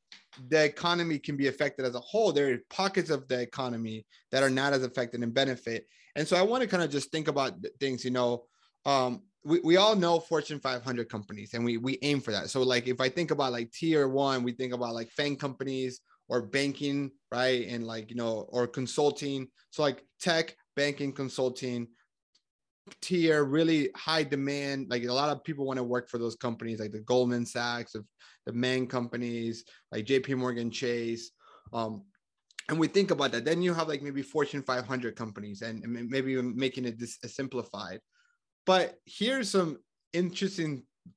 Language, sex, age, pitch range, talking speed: English, male, 30-49, 120-155 Hz, 185 wpm